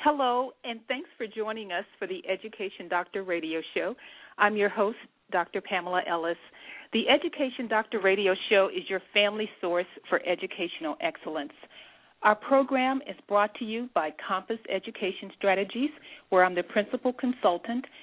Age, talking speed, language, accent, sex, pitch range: 40-59, 150 wpm, English, American, female, 190-240 Hz